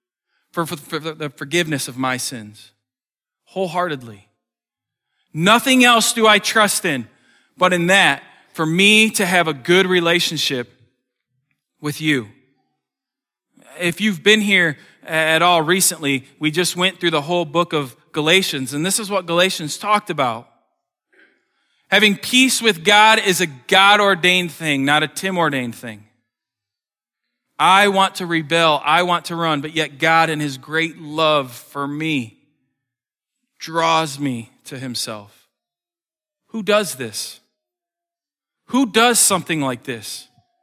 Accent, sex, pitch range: American, male, 140-195 Hz